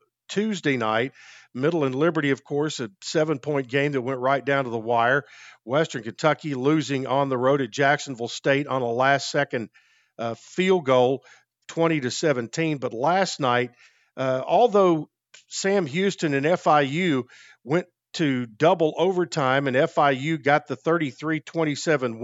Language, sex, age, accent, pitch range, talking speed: English, male, 50-69, American, 125-155 Hz, 145 wpm